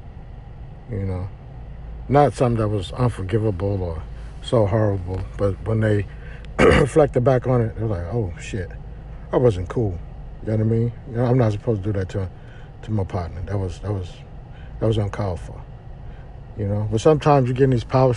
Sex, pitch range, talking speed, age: male, 110-135 Hz, 190 wpm, 50-69